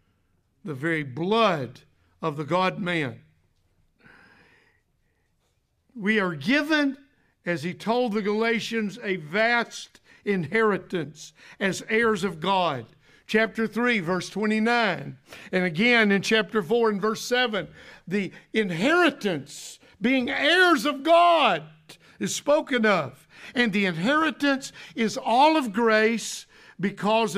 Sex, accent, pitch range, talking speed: male, American, 180-235 Hz, 110 wpm